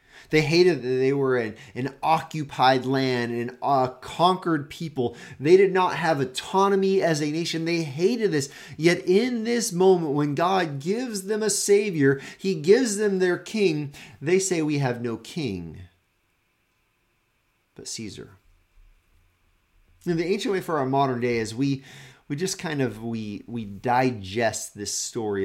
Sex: male